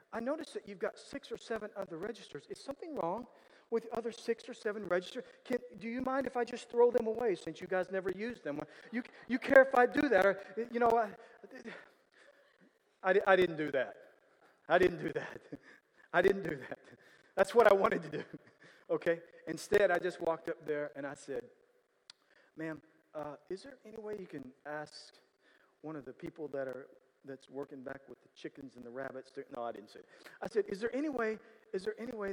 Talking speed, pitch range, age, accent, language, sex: 215 wpm, 140-230 Hz, 40-59, American, English, male